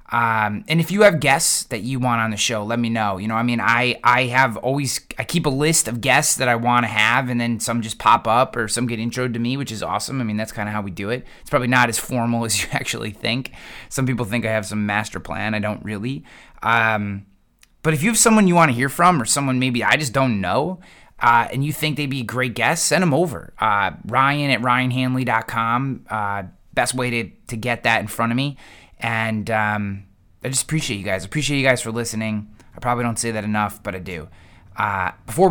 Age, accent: 20-39, American